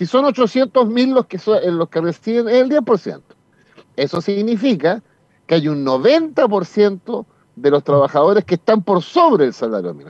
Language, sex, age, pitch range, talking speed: Spanish, male, 50-69, 150-210 Hz, 165 wpm